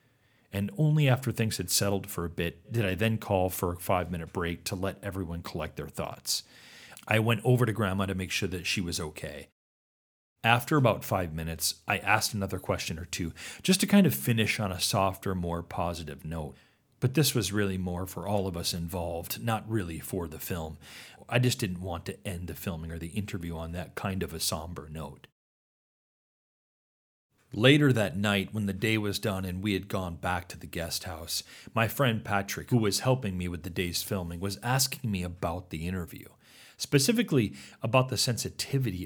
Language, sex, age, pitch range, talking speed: English, male, 40-59, 85-115 Hz, 195 wpm